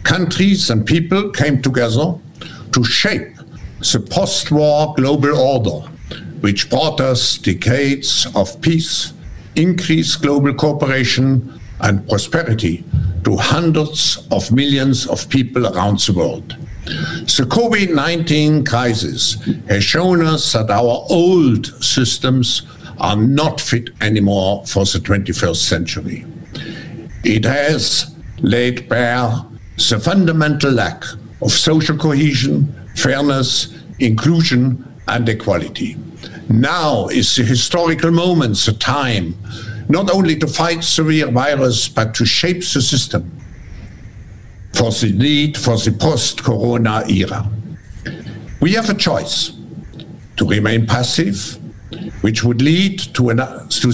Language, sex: Dutch, male